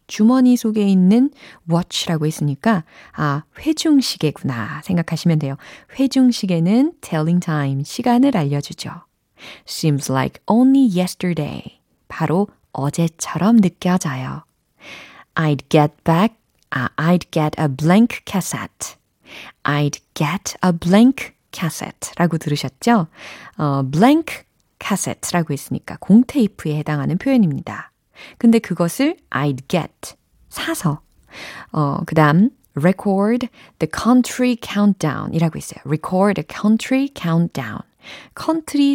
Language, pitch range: Korean, 150-215 Hz